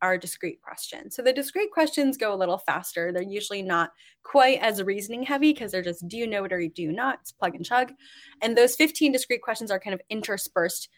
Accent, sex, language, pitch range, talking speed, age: American, female, English, 175-250 Hz, 230 wpm, 10-29